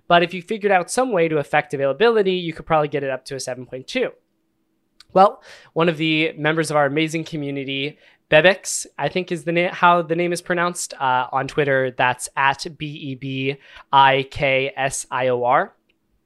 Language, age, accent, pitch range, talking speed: English, 20-39, American, 130-160 Hz, 165 wpm